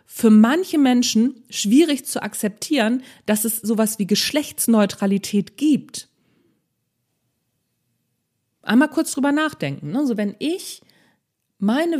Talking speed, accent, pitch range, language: 95 wpm, German, 195-260 Hz, German